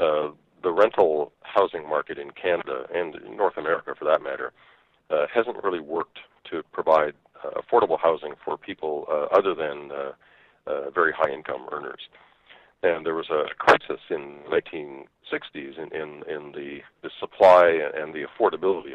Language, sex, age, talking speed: English, male, 50-69, 160 wpm